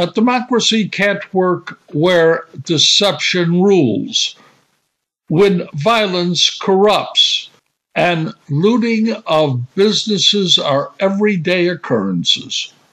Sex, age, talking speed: male, 60-79, 75 wpm